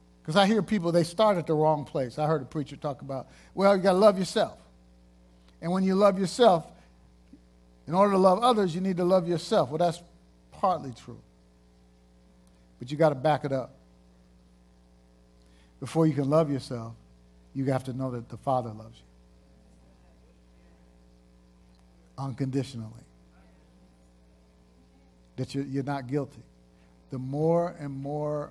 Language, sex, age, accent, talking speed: English, male, 50-69, American, 150 wpm